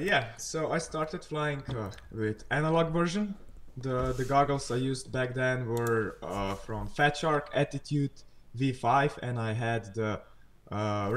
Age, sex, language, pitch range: 20-39, male, Polish, 125-155 Hz